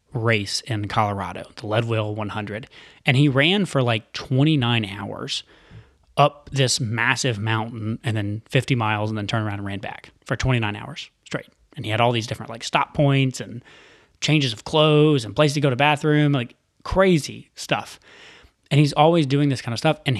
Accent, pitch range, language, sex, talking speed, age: American, 110-150 Hz, English, male, 185 wpm, 20-39